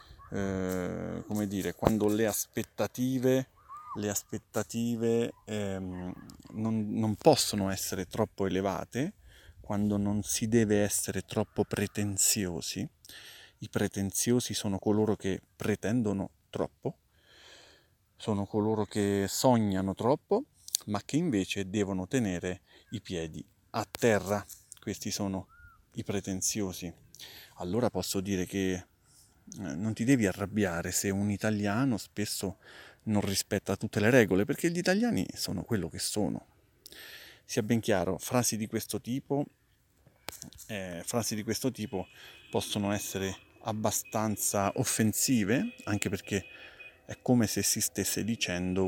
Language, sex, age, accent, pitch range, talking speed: Italian, male, 30-49, native, 95-115 Hz, 115 wpm